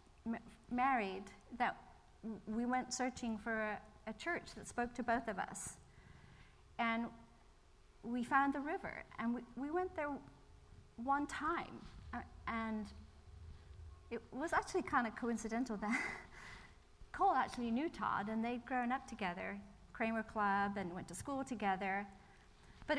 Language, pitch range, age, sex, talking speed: English, 200-260 Hz, 30-49, female, 140 wpm